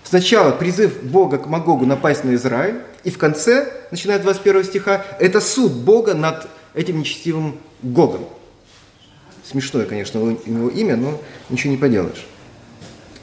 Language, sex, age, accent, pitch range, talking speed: Russian, male, 30-49, native, 140-200 Hz, 130 wpm